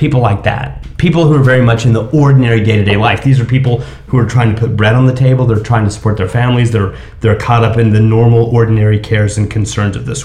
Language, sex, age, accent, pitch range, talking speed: English, male, 30-49, American, 110-135 Hz, 260 wpm